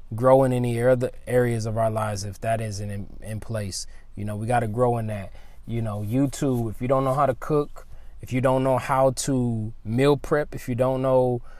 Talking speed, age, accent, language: 230 wpm, 20-39, American, English